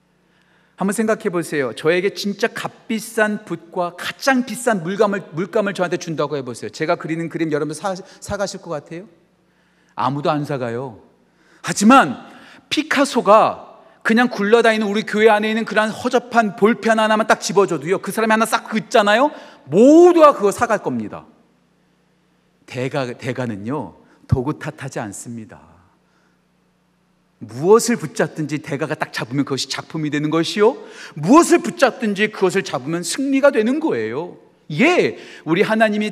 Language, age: Korean, 40-59